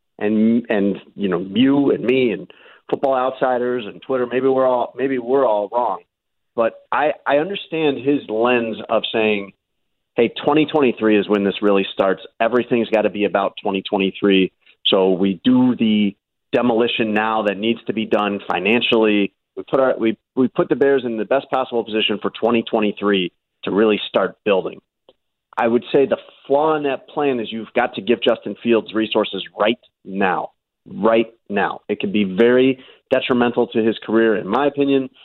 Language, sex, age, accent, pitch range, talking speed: English, male, 40-59, American, 105-130 Hz, 175 wpm